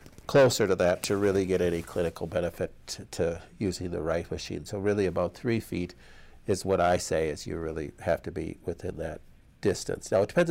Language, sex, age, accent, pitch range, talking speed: English, male, 60-79, American, 95-115 Hz, 205 wpm